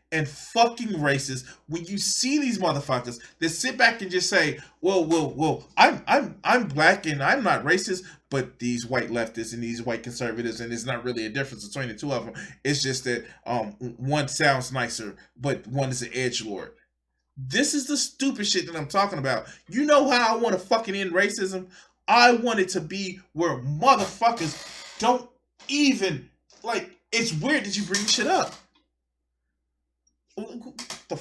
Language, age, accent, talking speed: English, 20-39, American, 180 wpm